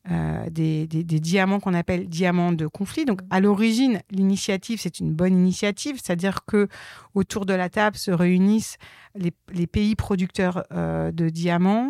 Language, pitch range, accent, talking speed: French, 180-215 Hz, French, 165 wpm